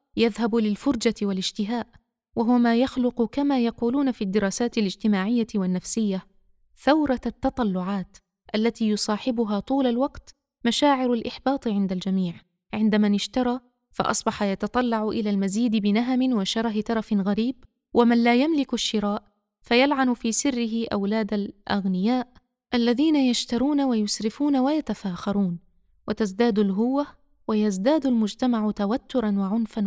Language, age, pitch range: Arabic, 20-39, 210-250 Hz